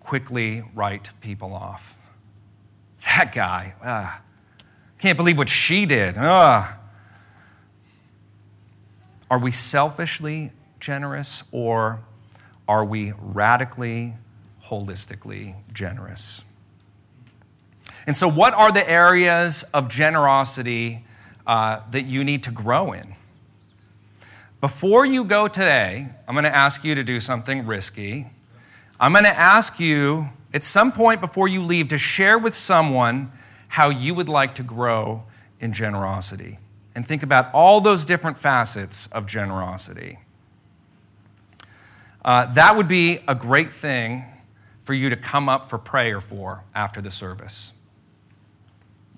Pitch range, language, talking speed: 105-140 Hz, English, 120 wpm